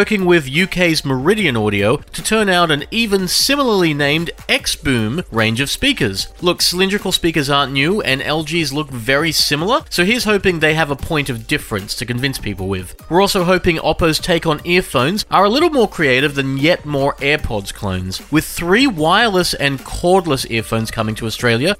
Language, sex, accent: English, male, Australian